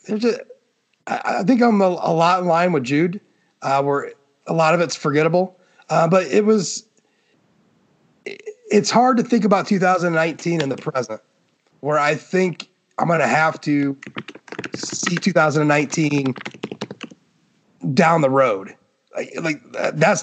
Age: 30-49